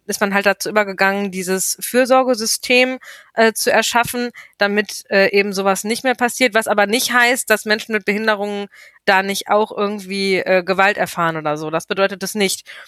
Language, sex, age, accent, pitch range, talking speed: German, female, 20-39, German, 200-235 Hz, 175 wpm